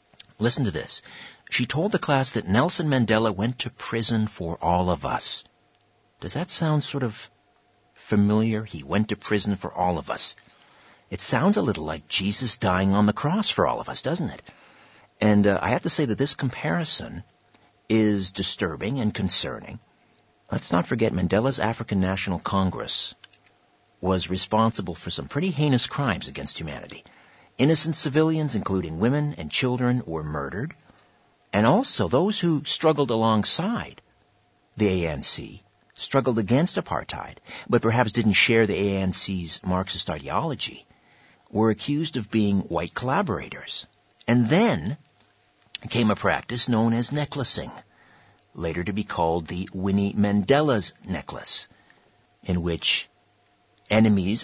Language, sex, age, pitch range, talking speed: English, male, 50-69, 95-125 Hz, 140 wpm